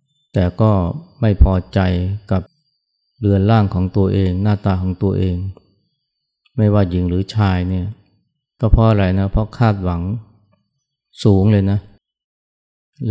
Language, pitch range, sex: Thai, 95-110 Hz, male